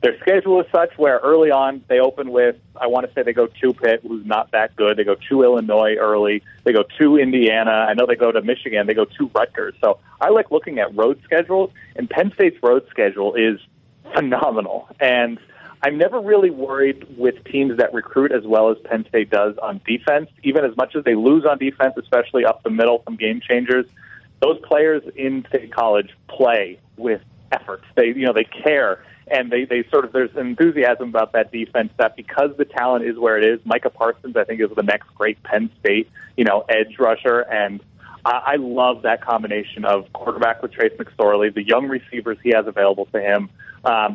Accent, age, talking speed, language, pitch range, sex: American, 30-49, 205 wpm, English, 115-160 Hz, male